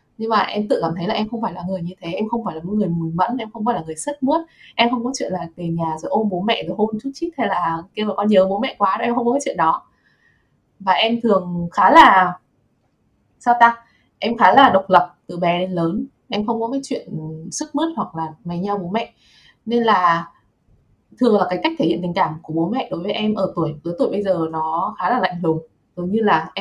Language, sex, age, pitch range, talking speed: Vietnamese, female, 20-39, 170-225 Hz, 270 wpm